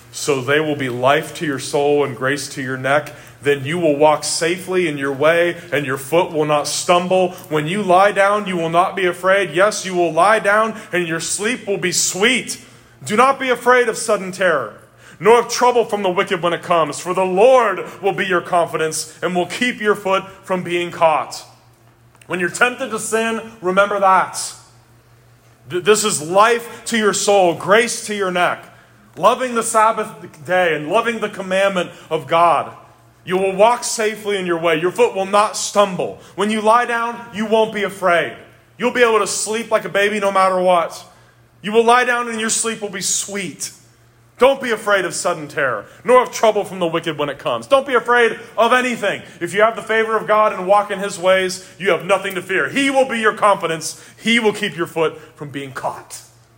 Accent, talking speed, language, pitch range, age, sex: American, 210 wpm, English, 155-215 Hz, 30-49, male